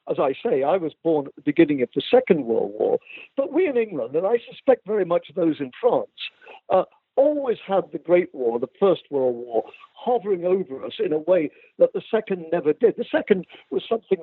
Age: 60-79